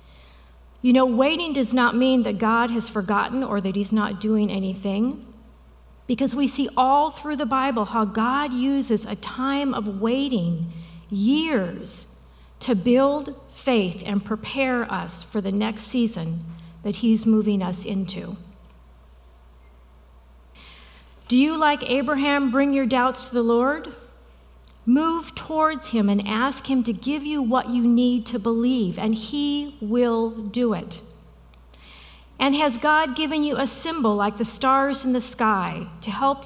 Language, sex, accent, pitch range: English, female, American, 195-260 Hz